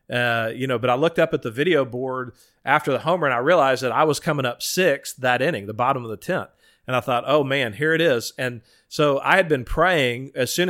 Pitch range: 120-145 Hz